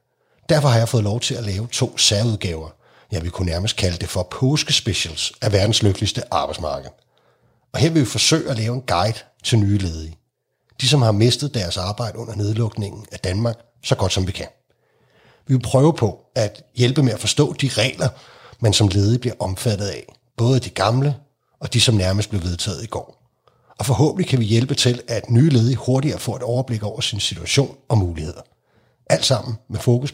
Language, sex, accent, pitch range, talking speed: Danish, male, native, 100-130 Hz, 200 wpm